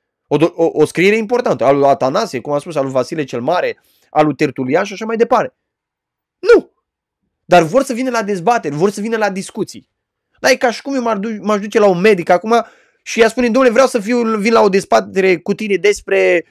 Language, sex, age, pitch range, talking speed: Romanian, male, 20-39, 170-255 Hz, 220 wpm